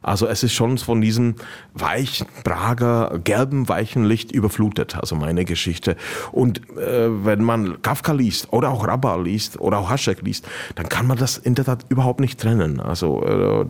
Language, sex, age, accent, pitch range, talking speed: German, male, 40-59, German, 95-115 Hz, 180 wpm